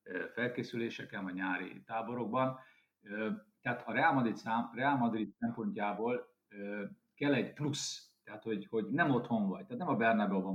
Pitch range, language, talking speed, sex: 100-125 Hz, Hungarian, 130 wpm, male